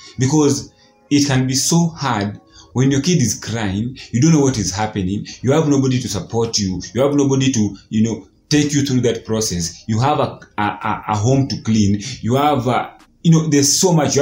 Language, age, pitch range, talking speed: English, 30-49, 105-140 Hz, 205 wpm